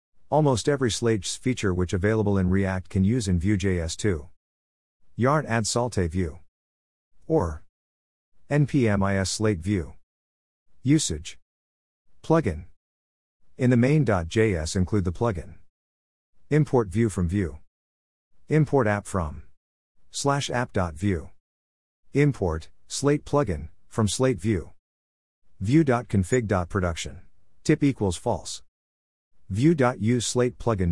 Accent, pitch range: American, 80-115 Hz